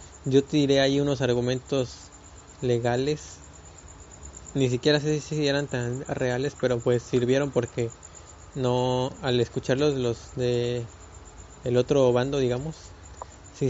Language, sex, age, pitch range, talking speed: Spanish, male, 20-39, 120-145 Hz, 120 wpm